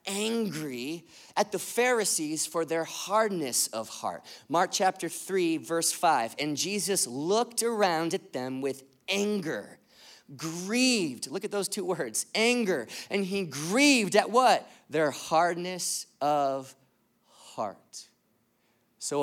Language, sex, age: English, male, 30-49